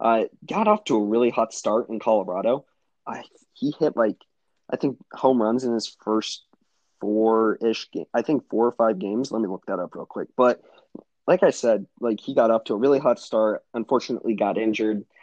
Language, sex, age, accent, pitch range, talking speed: English, male, 20-39, American, 110-130 Hz, 210 wpm